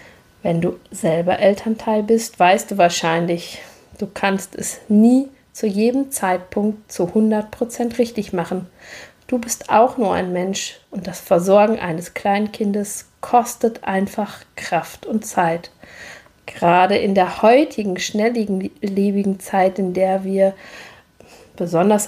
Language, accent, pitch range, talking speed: German, German, 180-220 Hz, 125 wpm